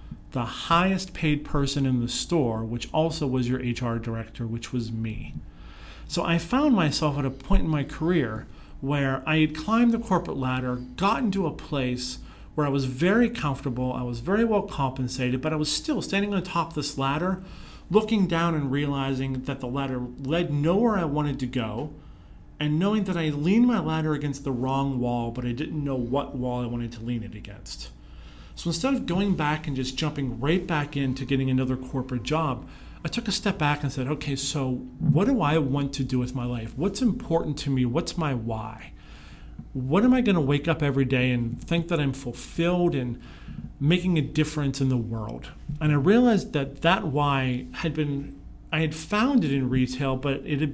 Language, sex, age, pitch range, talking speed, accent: English, male, 40-59, 125-165 Hz, 200 wpm, American